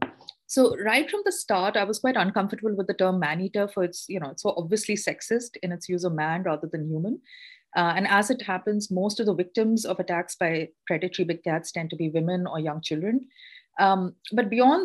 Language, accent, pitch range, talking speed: English, Indian, 180-250 Hz, 215 wpm